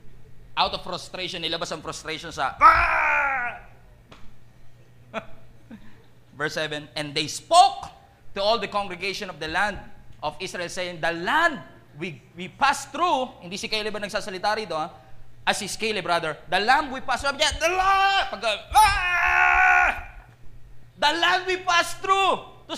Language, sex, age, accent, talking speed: English, male, 20-39, Filipino, 140 wpm